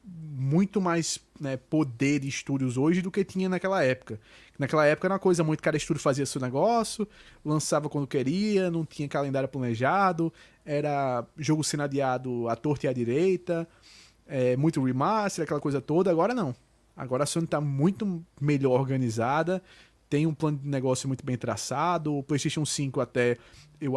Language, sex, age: Portuguese, male, 20-39